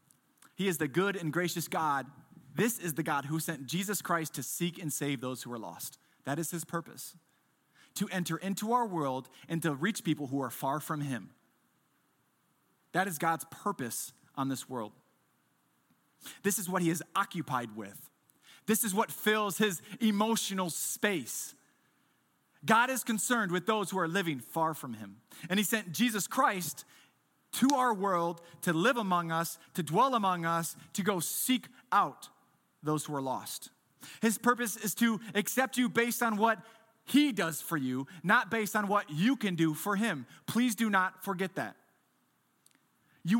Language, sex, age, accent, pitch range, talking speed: English, male, 30-49, American, 155-210 Hz, 175 wpm